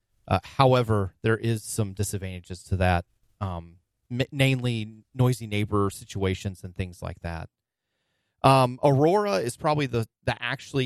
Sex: male